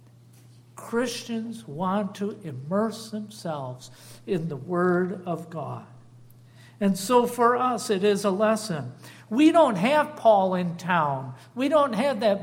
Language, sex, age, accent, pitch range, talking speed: English, male, 60-79, American, 130-205 Hz, 135 wpm